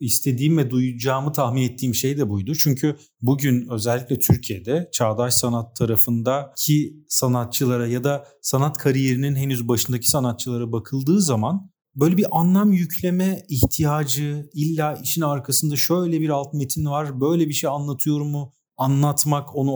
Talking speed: 135 wpm